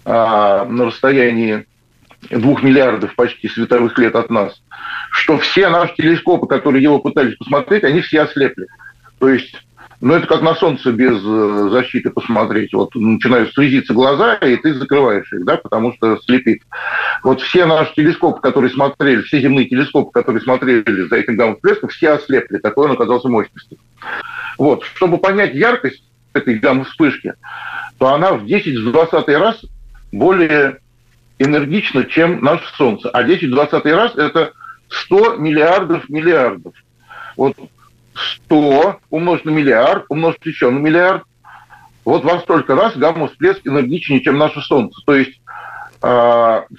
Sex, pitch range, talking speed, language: male, 120-165 Hz, 135 wpm, Russian